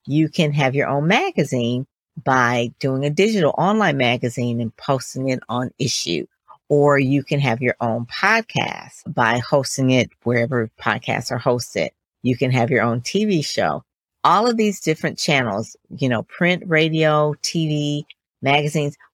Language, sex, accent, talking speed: English, female, American, 155 wpm